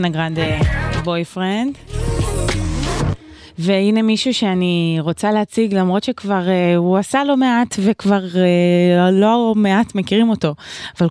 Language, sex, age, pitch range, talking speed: Hebrew, female, 20-39, 155-210 Hz, 120 wpm